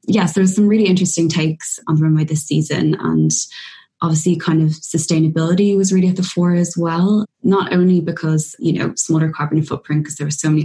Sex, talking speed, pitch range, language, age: female, 210 wpm, 155-180 Hz, English, 20-39